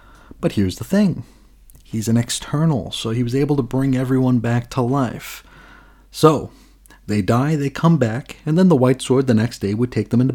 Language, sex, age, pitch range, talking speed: English, male, 30-49, 110-145 Hz, 205 wpm